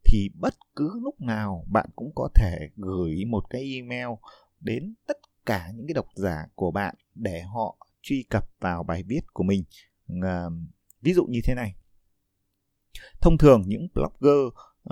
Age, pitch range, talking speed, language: 20-39, 95-140 Hz, 160 wpm, Vietnamese